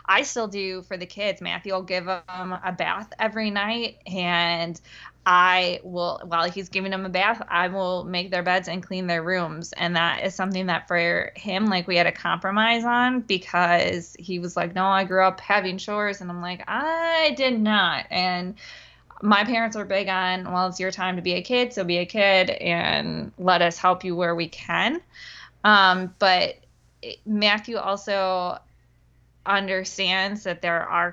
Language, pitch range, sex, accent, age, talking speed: English, 180-205 Hz, female, American, 20-39, 185 wpm